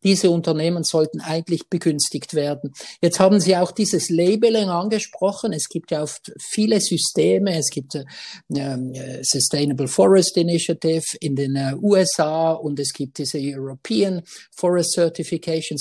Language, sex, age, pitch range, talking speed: German, male, 50-69, 155-180 Hz, 140 wpm